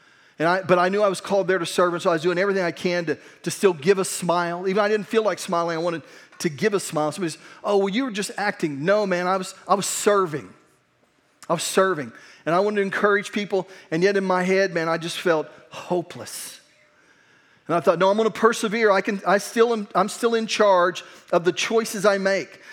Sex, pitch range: male, 160-200 Hz